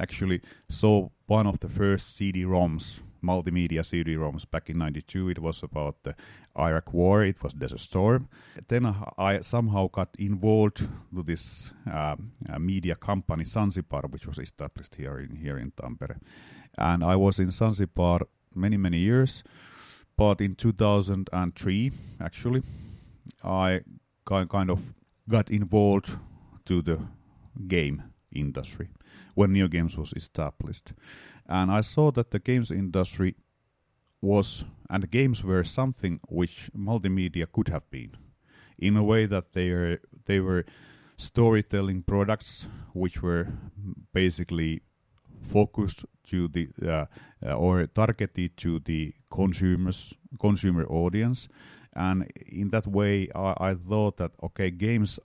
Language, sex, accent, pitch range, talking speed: English, male, Finnish, 85-105 Hz, 130 wpm